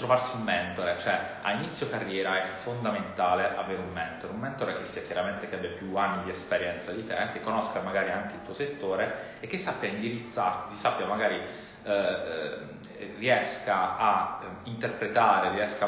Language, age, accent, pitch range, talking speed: Italian, 30-49, native, 95-115 Hz, 165 wpm